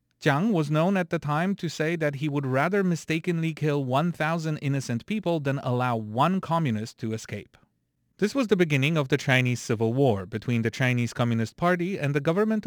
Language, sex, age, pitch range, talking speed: English, male, 30-49, 125-170 Hz, 190 wpm